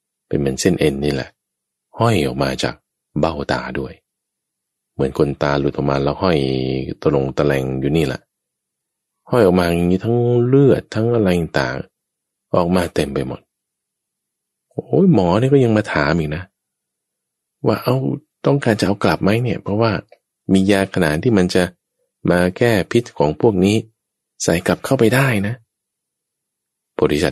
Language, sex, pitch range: English, male, 75-115 Hz